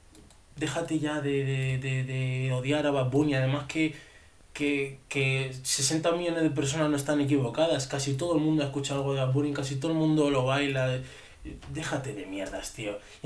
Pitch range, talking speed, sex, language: 115-150 Hz, 190 wpm, male, Spanish